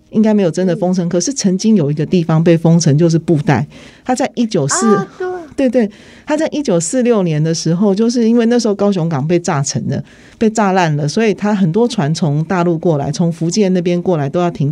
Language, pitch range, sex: Chinese, 150-200 Hz, male